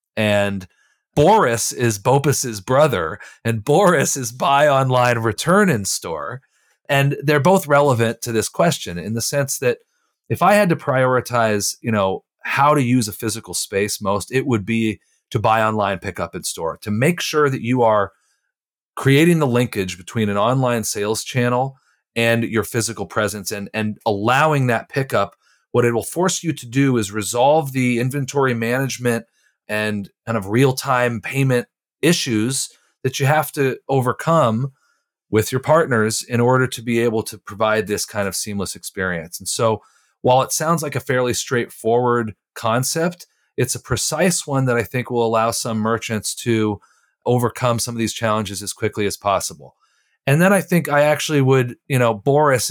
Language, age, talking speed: English, 40-59, 170 wpm